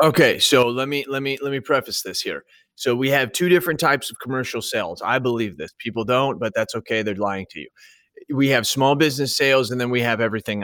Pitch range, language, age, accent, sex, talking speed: 115-150 Hz, English, 30-49, American, male, 235 wpm